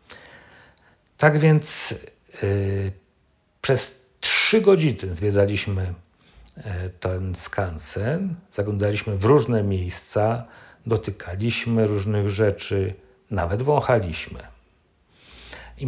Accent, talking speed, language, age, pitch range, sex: native, 70 wpm, Polish, 50-69, 90-115 Hz, male